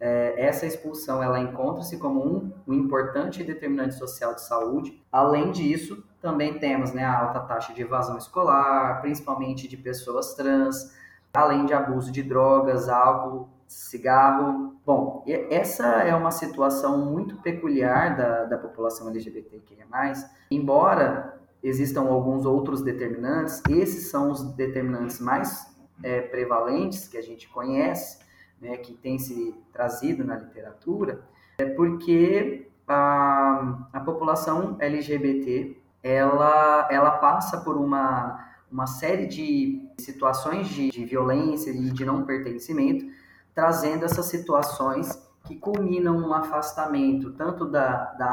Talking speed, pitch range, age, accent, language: 120 wpm, 130-155 Hz, 20-39, Brazilian, Portuguese